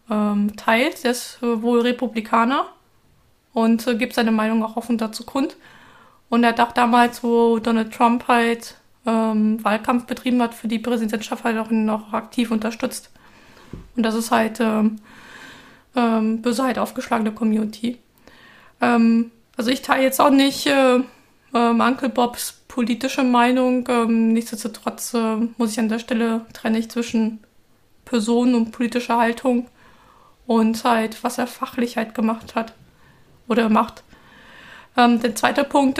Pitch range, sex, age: 230-260 Hz, female, 20-39